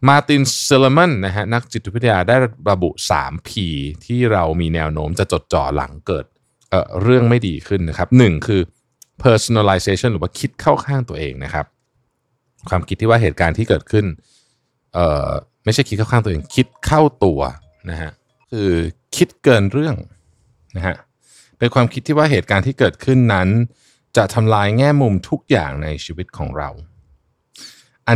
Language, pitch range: Thai, 85-125 Hz